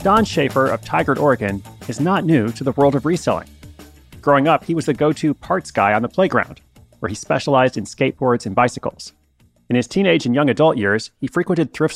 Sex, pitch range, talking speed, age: male, 115-150 Hz, 205 wpm, 30-49